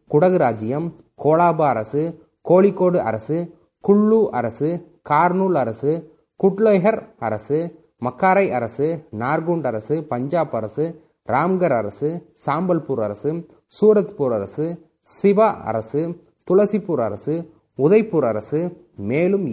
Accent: native